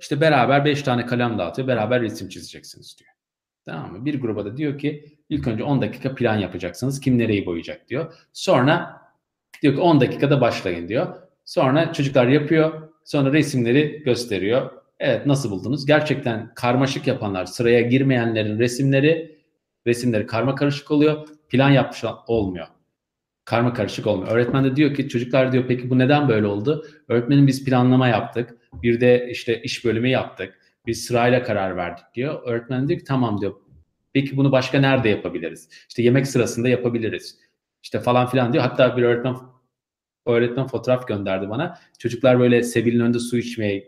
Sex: male